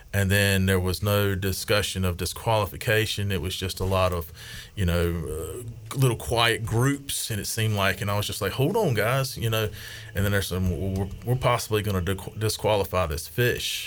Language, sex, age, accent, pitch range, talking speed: English, male, 30-49, American, 90-110 Hz, 200 wpm